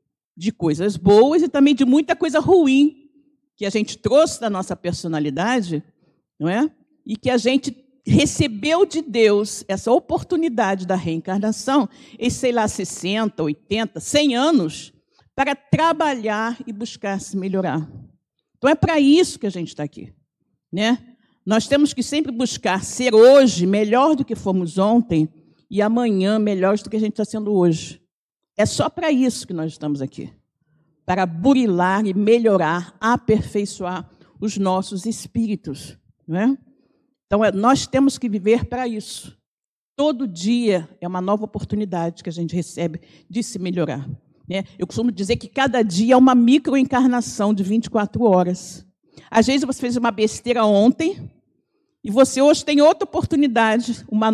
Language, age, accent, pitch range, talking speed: Portuguese, 50-69, Brazilian, 190-270 Hz, 155 wpm